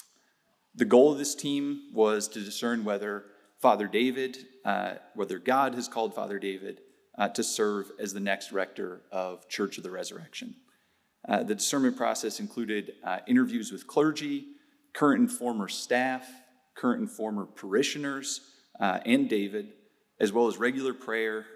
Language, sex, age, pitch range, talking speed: English, male, 30-49, 100-145 Hz, 155 wpm